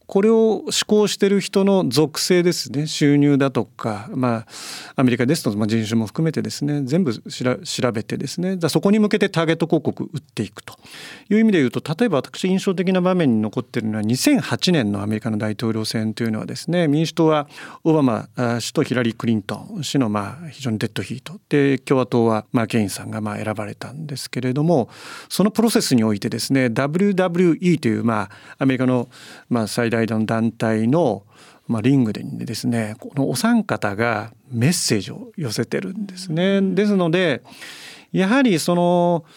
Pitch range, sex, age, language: 115-175 Hz, male, 40-59, Japanese